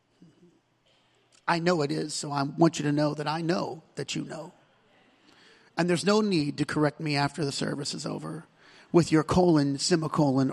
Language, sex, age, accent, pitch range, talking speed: English, male, 40-59, American, 150-190 Hz, 180 wpm